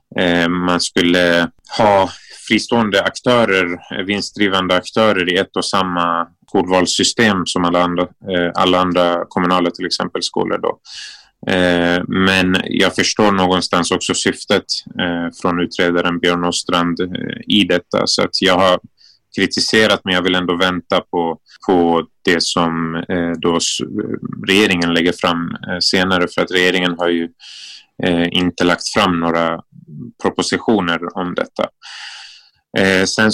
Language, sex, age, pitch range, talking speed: English, male, 20-39, 85-95 Hz, 115 wpm